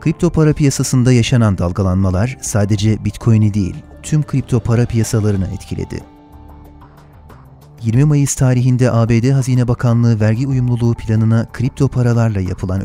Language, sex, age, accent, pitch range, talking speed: Turkish, male, 30-49, native, 100-125 Hz, 115 wpm